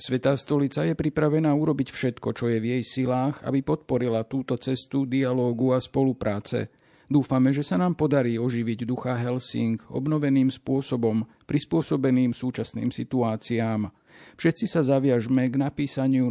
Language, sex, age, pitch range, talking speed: Slovak, male, 50-69, 120-140 Hz, 130 wpm